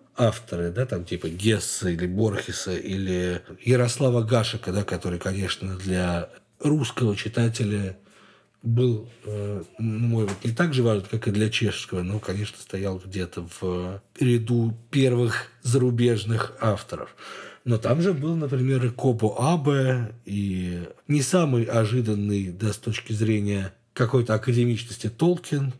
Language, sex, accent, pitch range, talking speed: Russian, male, native, 95-120 Hz, 130 wpm